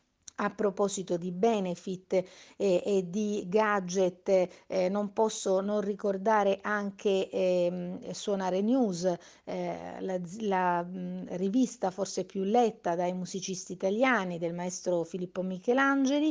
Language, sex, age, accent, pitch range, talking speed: Italian, female, 50-69, native, 180-220 Hz, 120 wpm